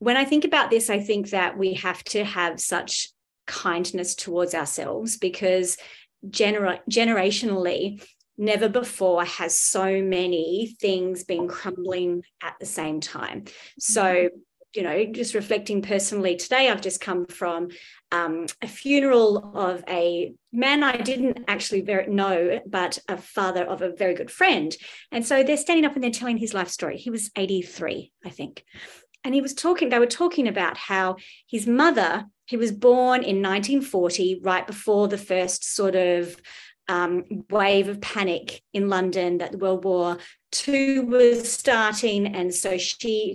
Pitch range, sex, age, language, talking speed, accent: 180-230 Hz, female, 30-49, English, 160 wpm, Australian